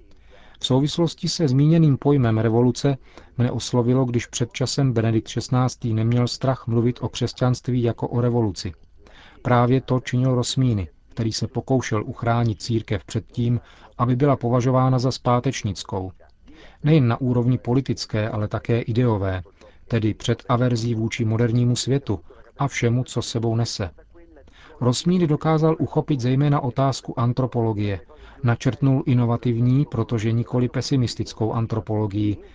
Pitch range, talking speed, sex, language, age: 110-130 Hz, 125 wpm, male, Czech, 40-59